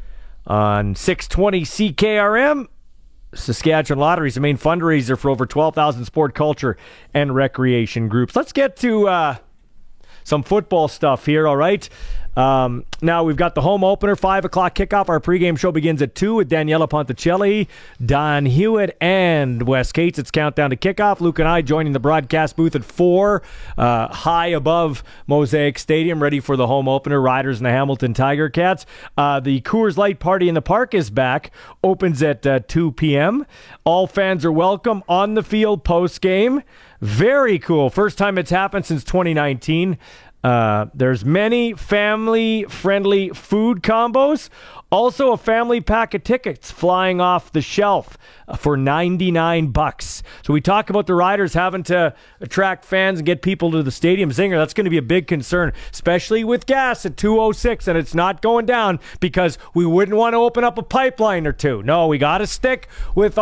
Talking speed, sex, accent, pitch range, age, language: 170 wpm, male, American, 145-205 Hz, 40-59, English